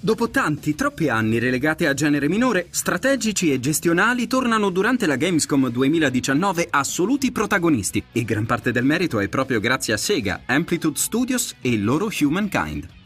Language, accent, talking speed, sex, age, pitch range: Italian, native, 155 wpm, male, 30-49, 125-190 Hz